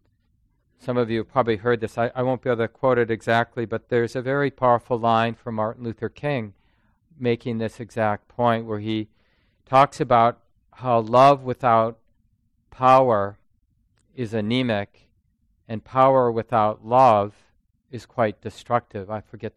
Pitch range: 110-125 Hz